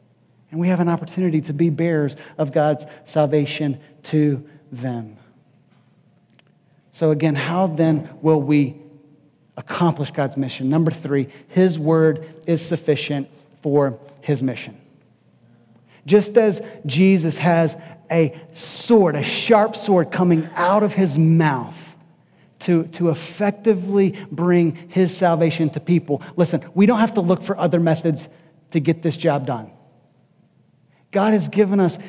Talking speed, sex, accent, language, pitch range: 135 wpm, male, American, English, 155-195 Hz